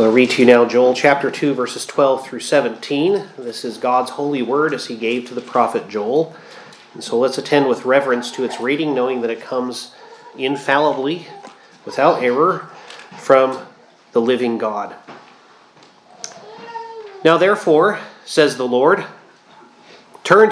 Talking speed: 150 wpm